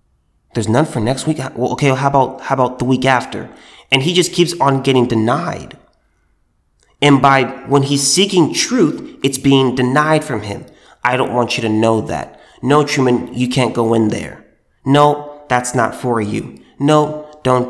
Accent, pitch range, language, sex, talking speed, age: American, 115-155 Hz, English, male, 185 wpm, 30-49